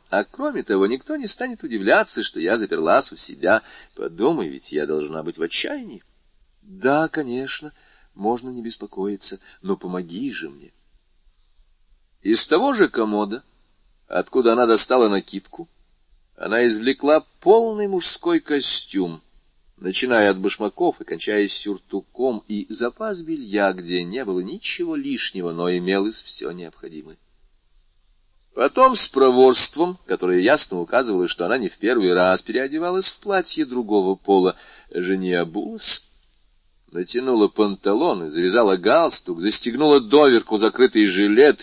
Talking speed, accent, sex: 125 wpm, native, male